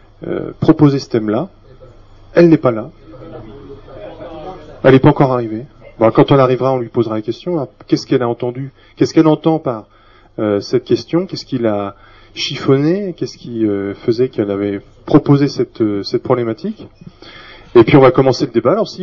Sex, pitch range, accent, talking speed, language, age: male, 105-145 Hz, French, 185 wpm, French, 30-49